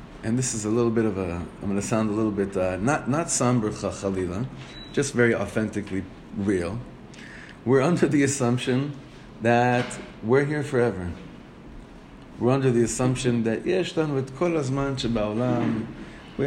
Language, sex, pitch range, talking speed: English, male, 105-135 Hz, 140 wpm